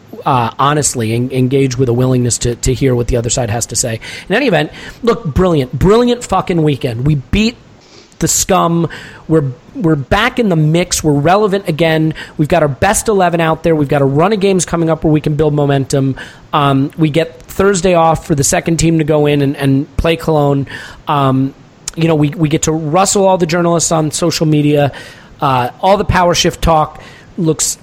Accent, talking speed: American, 205 wpm